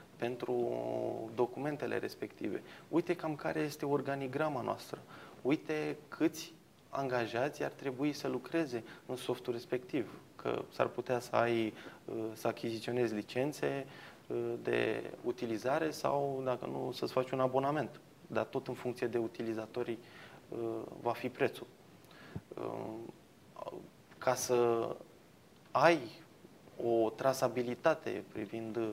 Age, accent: 20-39, native